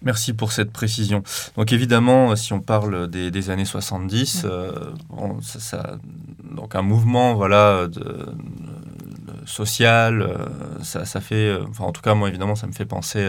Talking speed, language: 165 wpm, French